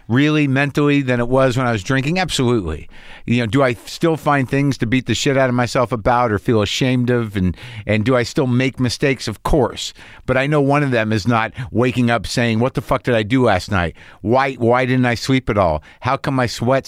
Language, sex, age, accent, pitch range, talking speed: English, male, 50-69, American, 105-140 Hz, 240 wpm